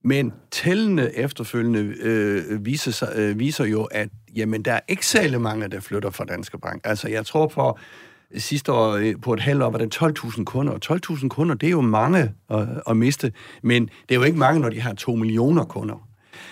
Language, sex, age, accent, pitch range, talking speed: Danish, male, 60-79, native, 115-150 Hz, 205 wpm